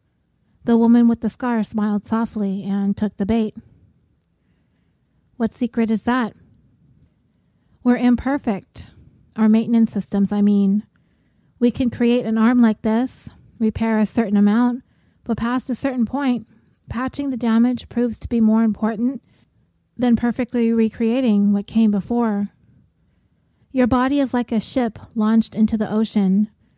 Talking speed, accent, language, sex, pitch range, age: 140 wpm, American, English, female, 205-240 Hz, 30-49